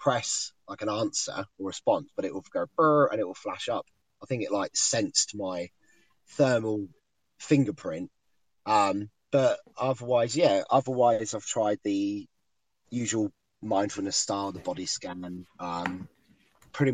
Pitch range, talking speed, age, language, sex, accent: 95-120 Hz, 140 wpm, 20-39, English, male, British